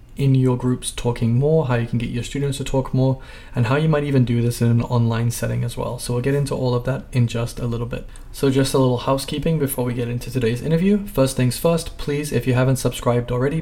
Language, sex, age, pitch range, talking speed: English, male, 20-39, 120-135 Hz, 260 wpm